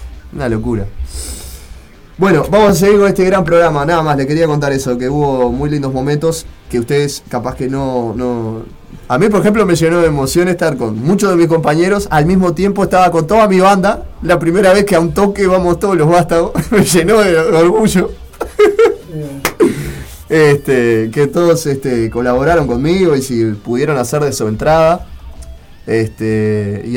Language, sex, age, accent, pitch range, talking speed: Spanish, male, 20-39, Argentinian, 110-165 Hz, 175 wpm